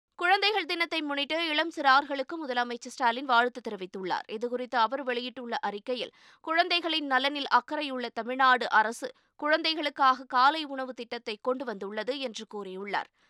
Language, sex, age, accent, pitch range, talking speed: Tamil, female, 20-39, native, 235-290 Hz, 110 wpm